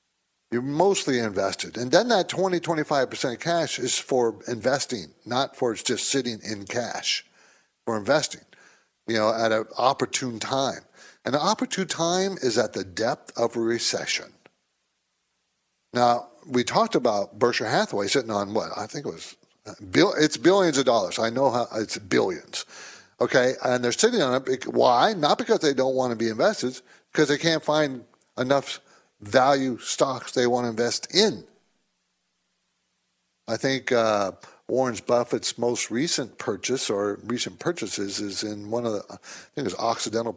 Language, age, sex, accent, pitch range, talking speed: English, 50-69, male, American, 115-150 Hz, 160 wpm